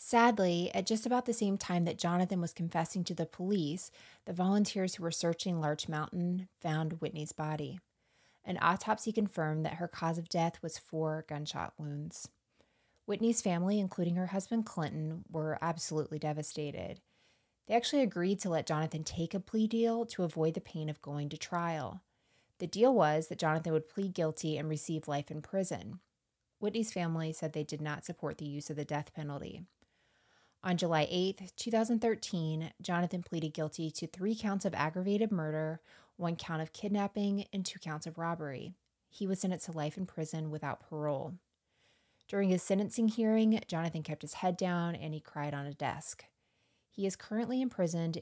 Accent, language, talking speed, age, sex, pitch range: American, English, 175 wpm, 20-39, female, 155-195 Hz